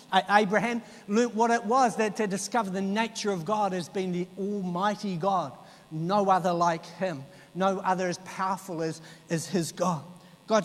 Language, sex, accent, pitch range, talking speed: English, male, Australian, 175-220 Hz, 170 wpm